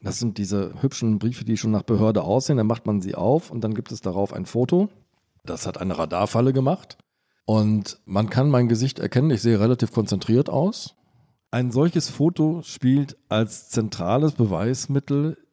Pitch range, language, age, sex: 105-135 Hz, German, 40-59, male